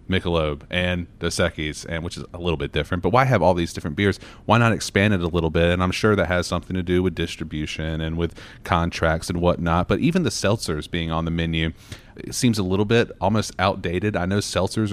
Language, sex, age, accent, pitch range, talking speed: English, male, 30-49, American, 85-105 Hz, 235 wpm